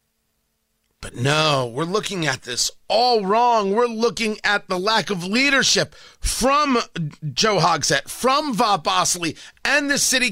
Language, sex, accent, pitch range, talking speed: English, male, American, 185-255 Hz, 135 wpm